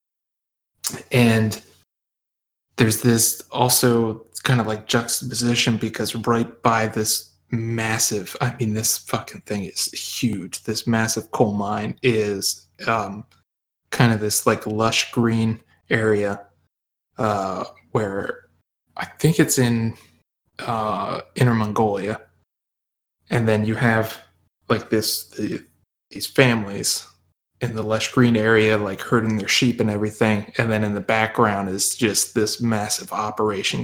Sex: male